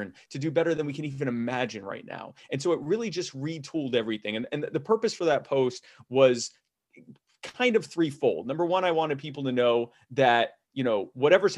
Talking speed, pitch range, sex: 200 wpm, 120-155 Hz, male